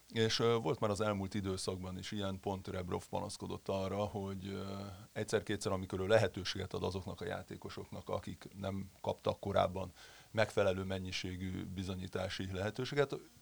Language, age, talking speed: Hungarian, 30-49, 125 wpm